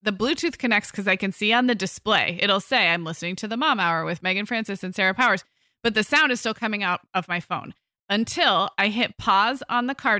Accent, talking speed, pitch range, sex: American, 240 wpm, 185-240 Hz, female